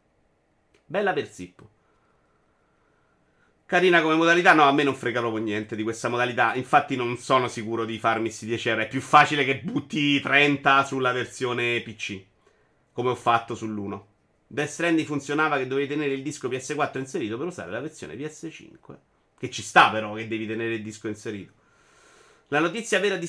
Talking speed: 165 wpm